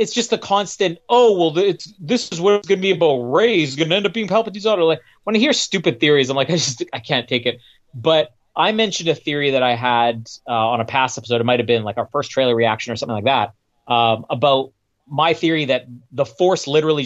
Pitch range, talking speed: 115-155 Hz, 250 wpm